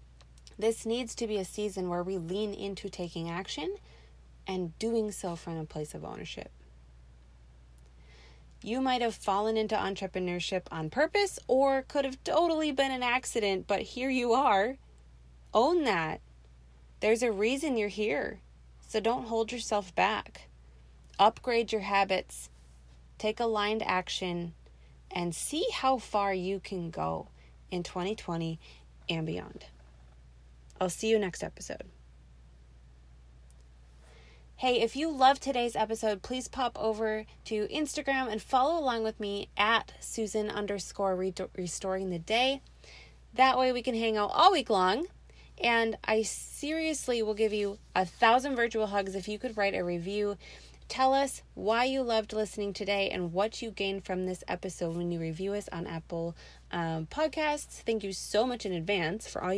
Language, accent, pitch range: English, American, 165-230 Hz